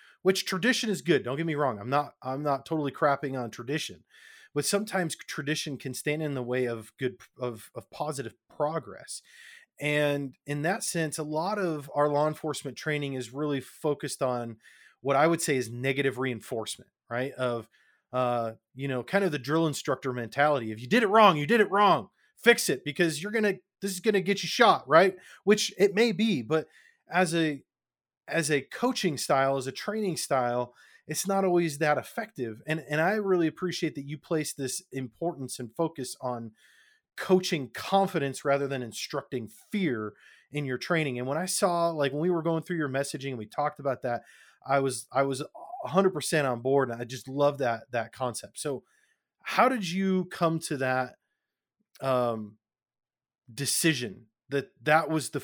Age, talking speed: 30-49, 190 wpm